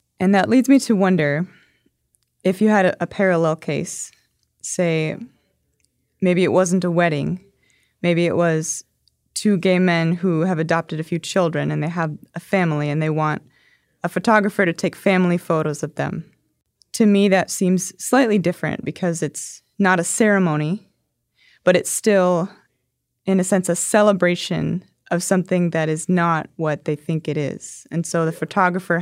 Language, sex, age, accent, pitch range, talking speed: English, female, 20-39, American, 160-190 Hz, 165 wpm